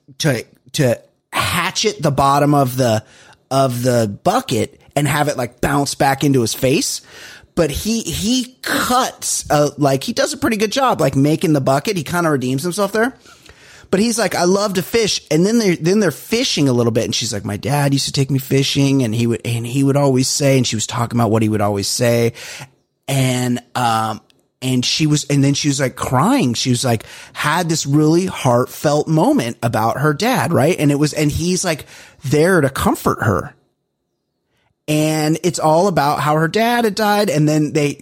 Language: English